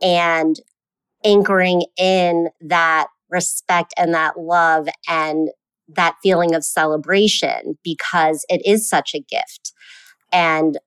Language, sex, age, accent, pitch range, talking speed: English, female, 30-49, American, 165-195 Hz, 110 wpm